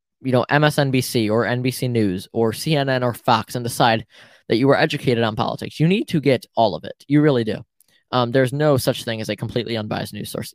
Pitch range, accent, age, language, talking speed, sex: 115-140 Hz, American, 10-29, English, 220 wpm, male